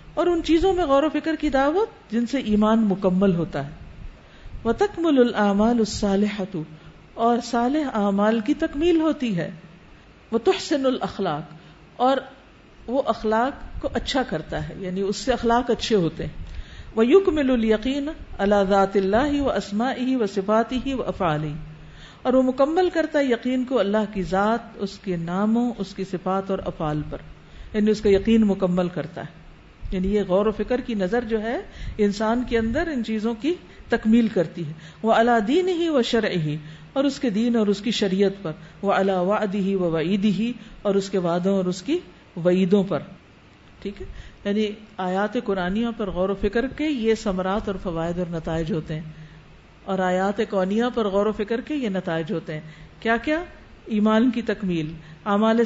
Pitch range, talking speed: 185-240 Hz, 170 wpm